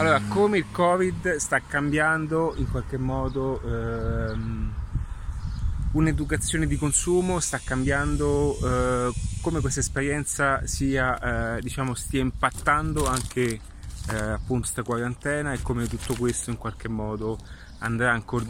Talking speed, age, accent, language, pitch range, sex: 125 wpm, 30-49, native, Italian, 105-130 Hz, male